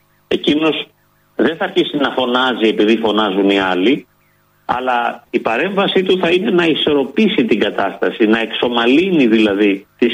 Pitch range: 105-155 Hz